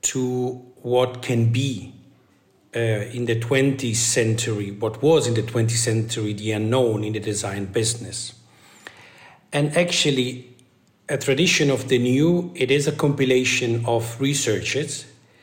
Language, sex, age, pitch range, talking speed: English, male, 50-69, 115-130 Hz, 130 wpm